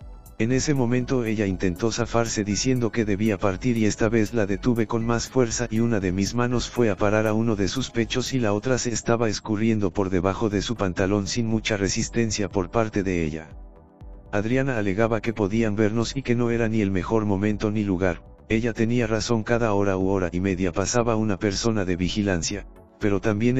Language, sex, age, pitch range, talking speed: Spanish, male, 50-69, 100-115 Hz, 205 wpm